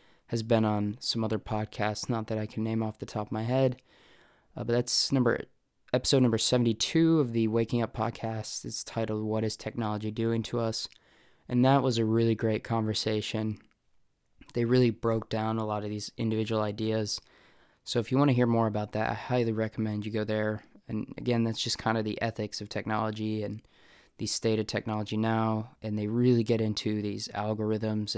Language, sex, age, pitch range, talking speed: English, male, 20-39, 110-120 Hz, 195 wpm